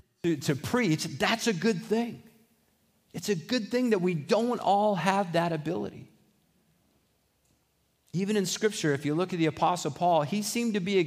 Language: English